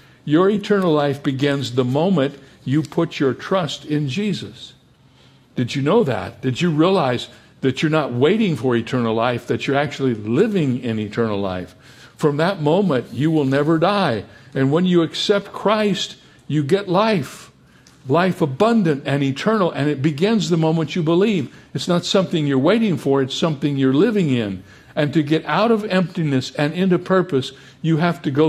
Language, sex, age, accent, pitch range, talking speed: English, male, 60-79, American, 130-175 Hz, 175 wpm